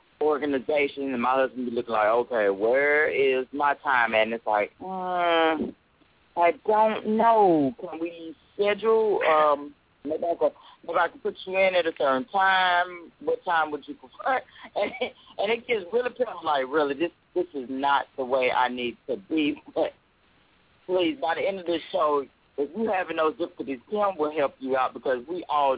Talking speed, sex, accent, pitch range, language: 185 wpm, male, American, 130-175 Hz, English